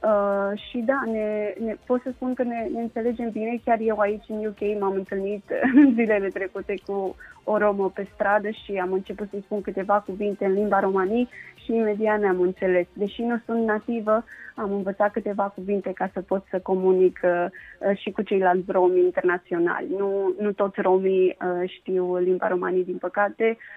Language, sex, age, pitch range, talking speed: Romanian, female, 20-39, 190-225 Hz, 175 wpm